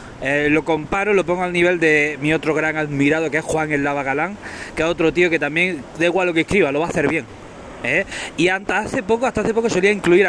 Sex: male